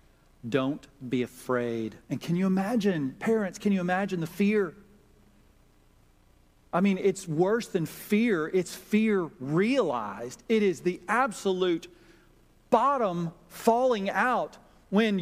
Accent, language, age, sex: American, English, 40-59, male